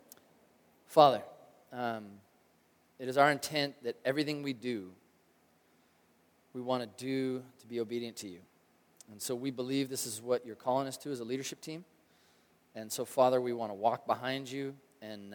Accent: American